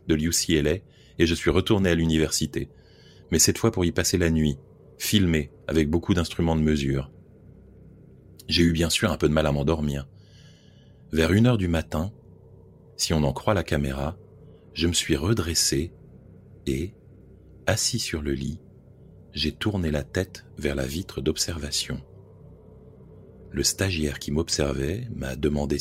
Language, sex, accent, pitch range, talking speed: French, male, French, 75-90 Hz, 155 wpm